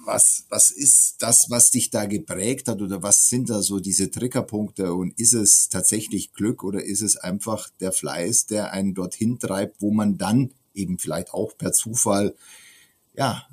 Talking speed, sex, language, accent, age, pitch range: 175 wpm, male, German, German, 50-69, 90-110 Hz